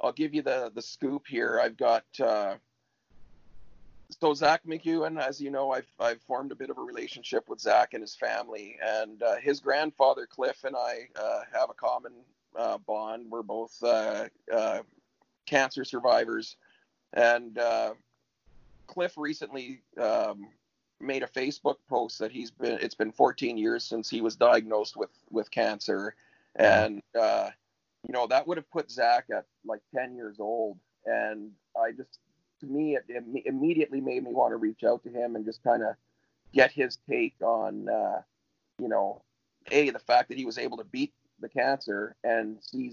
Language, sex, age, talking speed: English, male, 40-59, 175 wpm